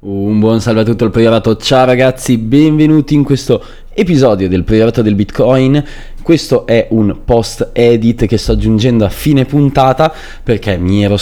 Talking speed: 165 wpm